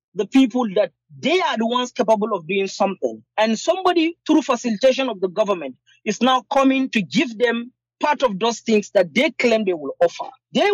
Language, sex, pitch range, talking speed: English, male, 210-280 Hz, 195 wpm